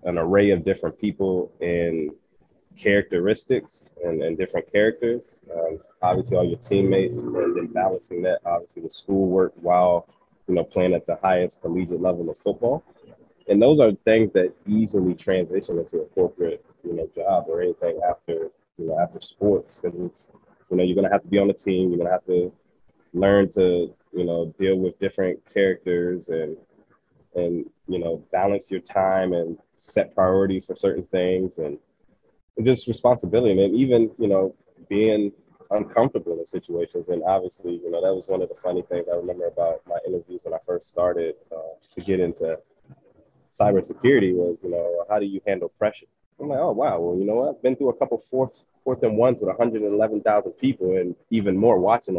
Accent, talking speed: American, 185 wpm